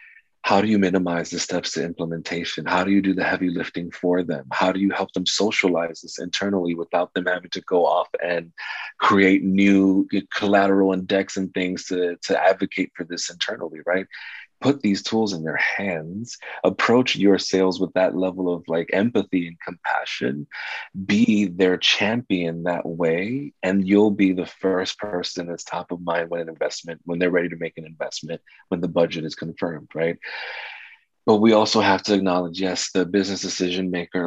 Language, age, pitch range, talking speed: English, 30-49, 85-100 Hz, 185 wpm